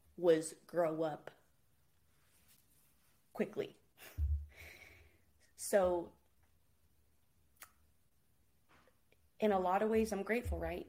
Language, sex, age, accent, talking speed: English, female, 20-39, American, 70 wpm